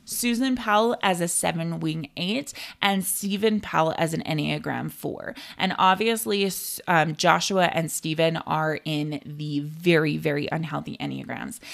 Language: English